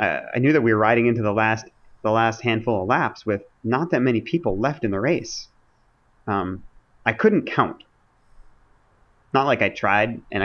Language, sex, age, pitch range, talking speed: English, male, 30-49, 100-120 Hz, 190 wpm